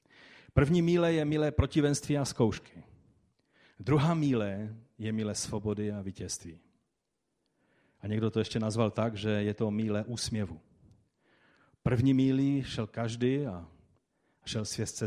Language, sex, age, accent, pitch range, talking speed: Czech, male, 40-59, native, 110-150 Hz, 125 wpm